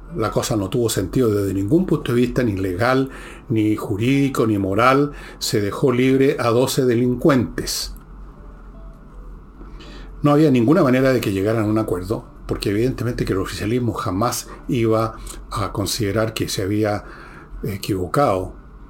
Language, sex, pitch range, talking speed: Spanish, male, 110-145 Hz, 145 wpm